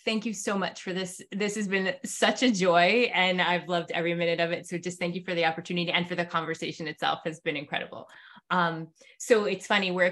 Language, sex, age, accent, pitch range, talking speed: English, female, 20-39, American, 170-225 Hz, 230 wpm